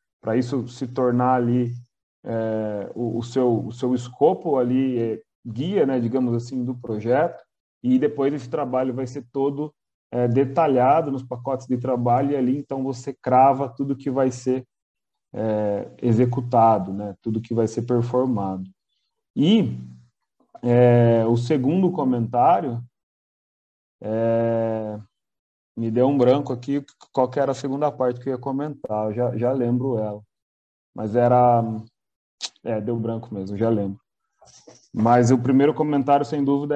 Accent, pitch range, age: Brazilian, 115-140 Hz, 30-49